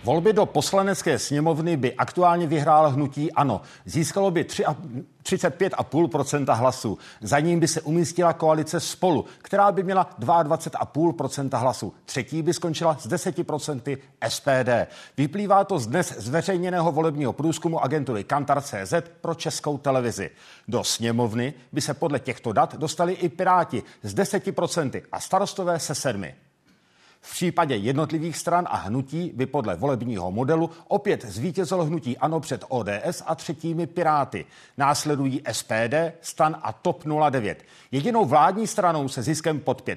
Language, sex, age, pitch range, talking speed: Czech, male, 50-69, 135-175 Hz, 135 wpm